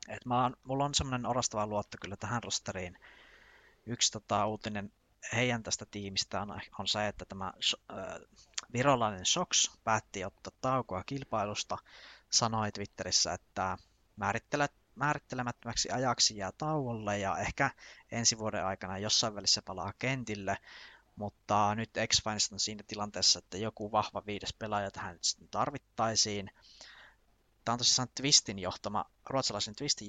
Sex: male